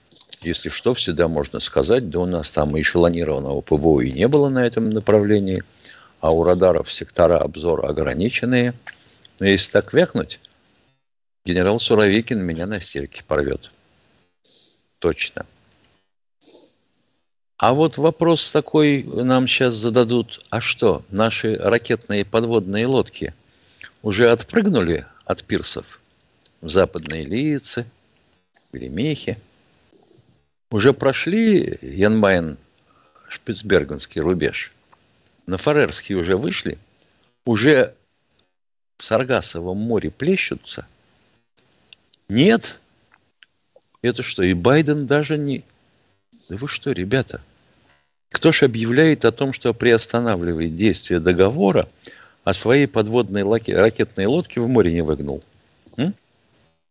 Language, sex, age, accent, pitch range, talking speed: Russian, male, 60-79, native, 90-125 Hz, 105 wpm